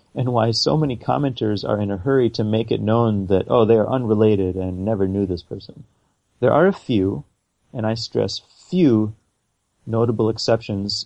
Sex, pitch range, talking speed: male, 95-115 Hz, 180 wpm